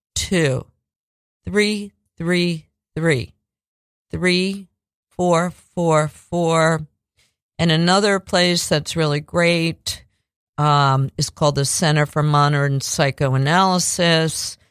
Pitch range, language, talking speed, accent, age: 140-175 Hz, English, 90 wpm, American, 50-69